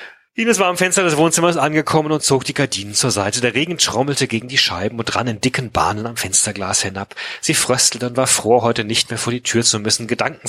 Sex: male